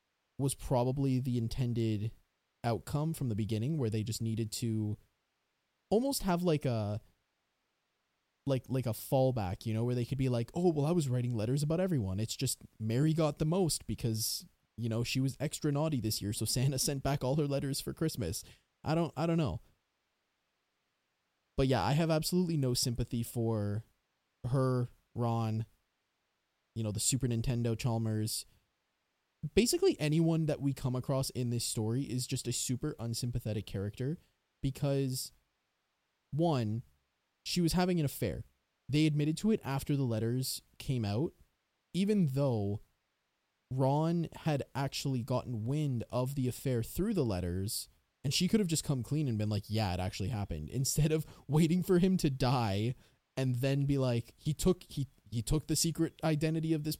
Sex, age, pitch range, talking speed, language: male, 20-39, 115-155 Hz, 170 wpm, English